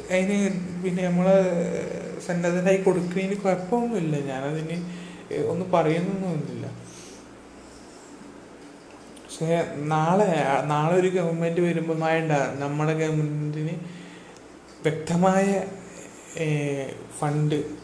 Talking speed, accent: 60 wpm, native